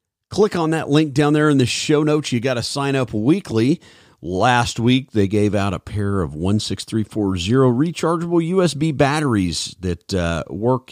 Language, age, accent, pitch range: English, 40-59, American, 95-130 Hz